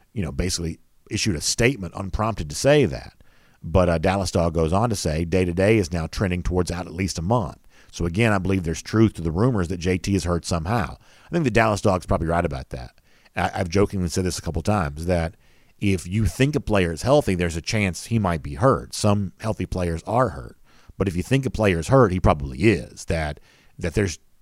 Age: 50-69